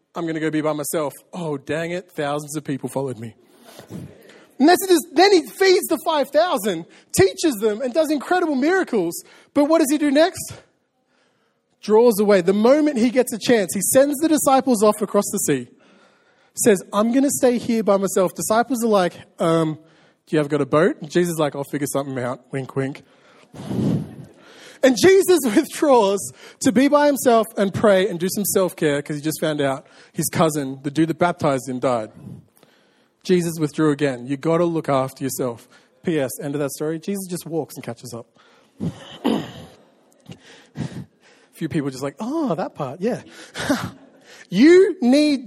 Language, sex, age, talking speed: English, male, 20-39, 180 wpm